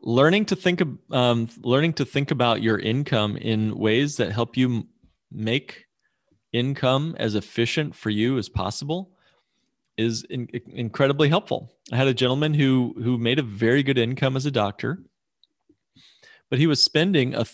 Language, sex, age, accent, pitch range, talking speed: English, male, 30-49, American, 115-145 Hz, 155 wpm